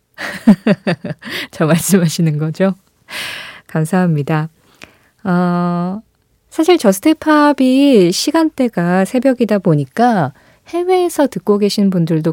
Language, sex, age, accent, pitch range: Korean, female, 20-39, native, 155-205 Hz